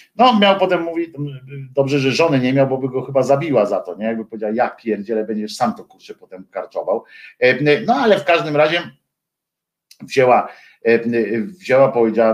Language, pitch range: Polish, 125-180 Hz